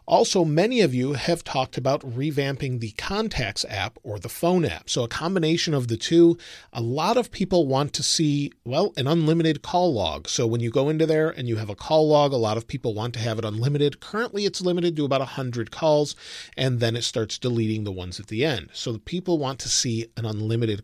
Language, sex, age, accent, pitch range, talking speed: English, male, 40-59, American, 115-155 Hz, 230 wpm